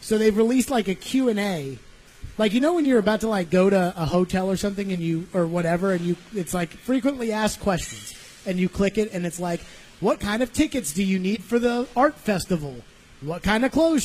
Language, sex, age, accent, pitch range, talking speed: English, male, 30-49, American, 185-235 Hz, 230 wpm